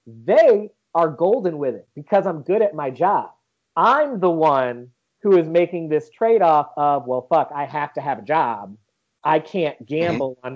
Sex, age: male, 30-49